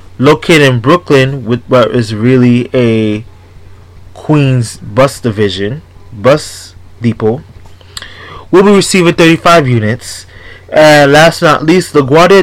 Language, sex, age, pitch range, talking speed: English, male, 20-39, 100-155 Hz, 125 wpm